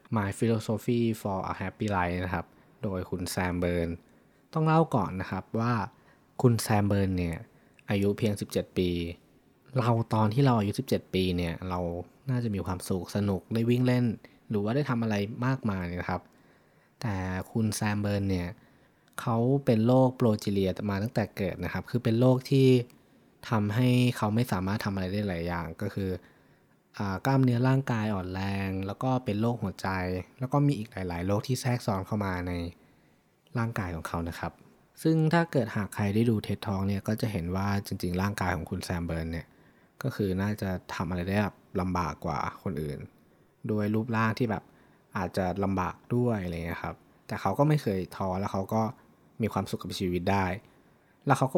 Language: Thai